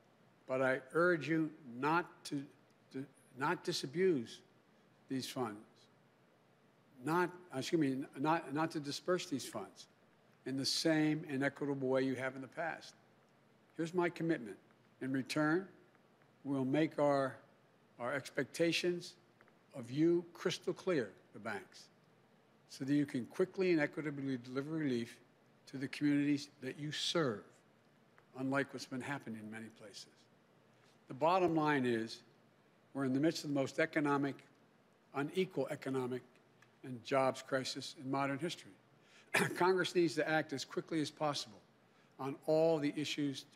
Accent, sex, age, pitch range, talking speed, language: American, male, 60-79, 130-160 Hz, 140 wpm, English